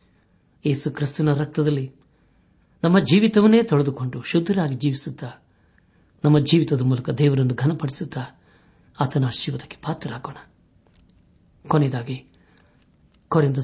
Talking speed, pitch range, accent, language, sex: 80 wpm, 125-165 Hz, native, Kannada, male